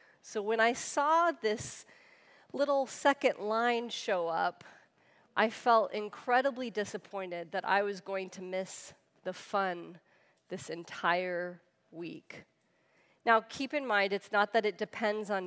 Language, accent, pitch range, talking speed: English, American, 190-230 Hz, 135 wpm